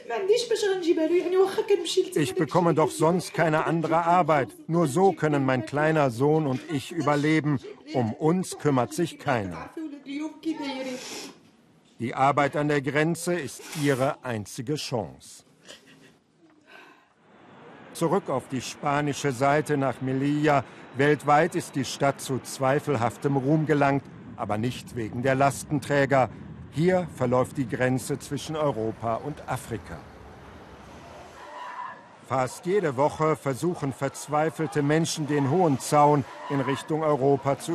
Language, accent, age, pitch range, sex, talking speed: German, German, 50-69, 130-165 Hz, male, 115 wpm